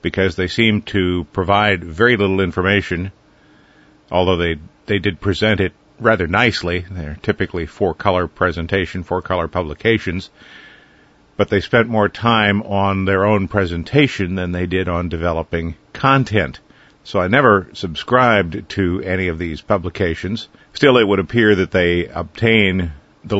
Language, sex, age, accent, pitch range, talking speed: English, male, 50-69, American, 90-110 Hz, 140 wpm